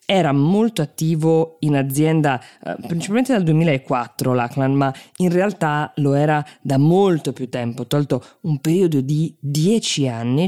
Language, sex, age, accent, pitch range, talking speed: Italian, female, 20-39, native, 145-230 Hz, 135 wpm